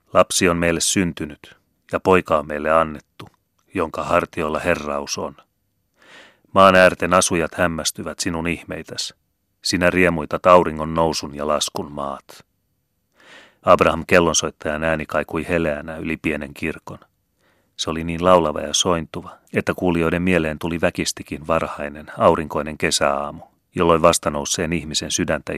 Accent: native